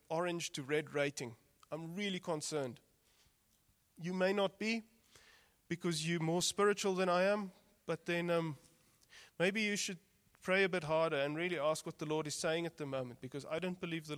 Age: 30-49